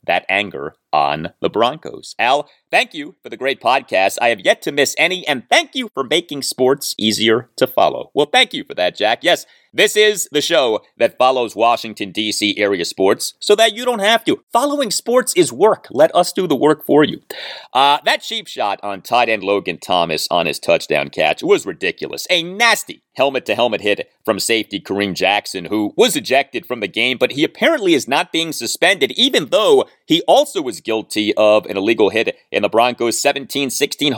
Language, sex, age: English, male, 30-49